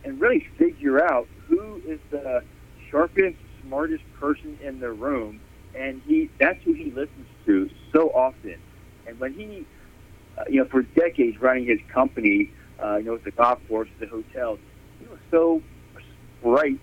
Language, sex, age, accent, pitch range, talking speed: English, male, 50-69, American, 115-155 Hz, 160 wpm